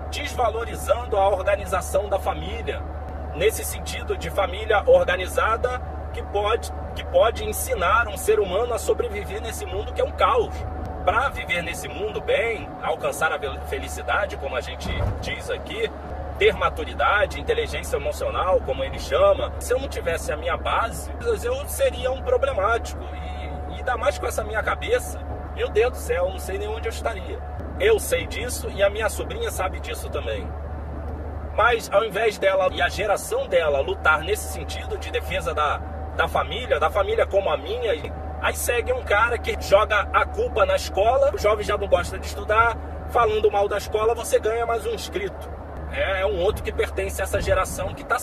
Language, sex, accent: Portuguese, male, Brazilian